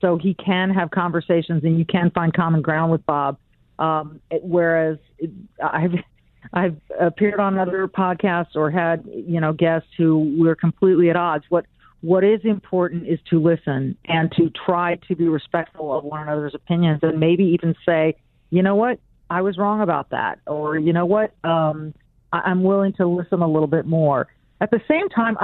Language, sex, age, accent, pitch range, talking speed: English, female, 40-59, American, 165-195 Hz, 185 wpm